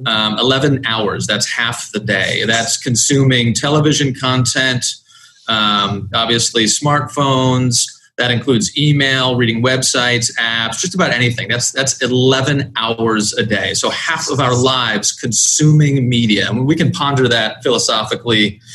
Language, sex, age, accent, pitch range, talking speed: English, male, 30-49, American, 115-145 Hz, 140 wpm